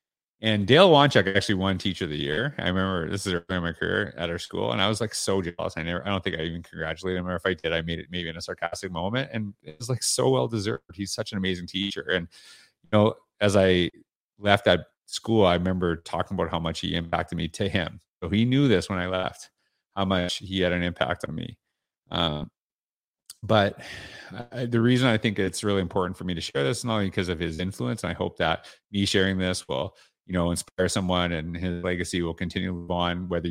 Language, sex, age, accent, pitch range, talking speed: English, male, 30-49, American, 85-100 Hz, 240 wpm